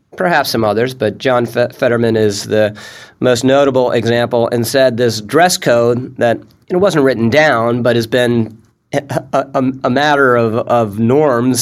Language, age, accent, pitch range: English, 40-59, American, 110-135 Hz